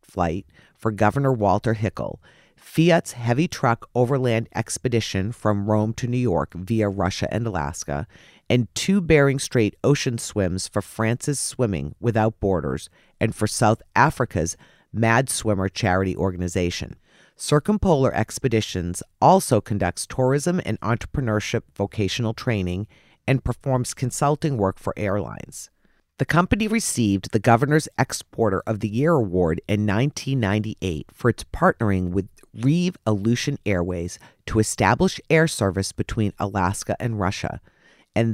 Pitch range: 95-130 Hz